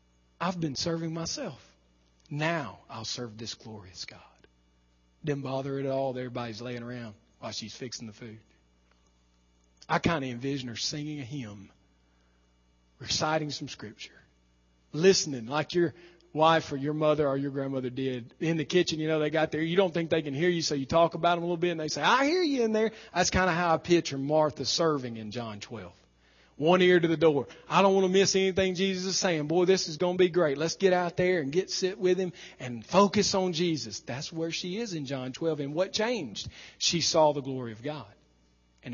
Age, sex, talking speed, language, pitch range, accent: 40-59, male, 215 wpm, English, 115-180 Hz, American